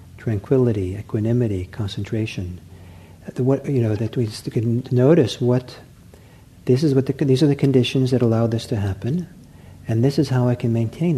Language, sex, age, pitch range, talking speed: English, male, 50-69, 95-130 Hz, 160 wpm